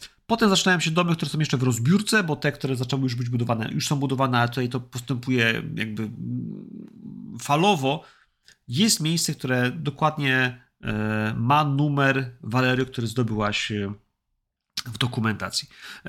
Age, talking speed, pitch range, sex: 40-59, 135 wpm, 115-150 Hz, male